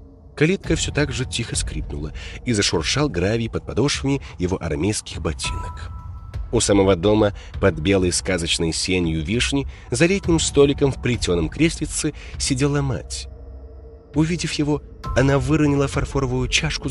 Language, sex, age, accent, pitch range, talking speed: Russian, male, 30-49, native, 80-135 Hz, 130 wpm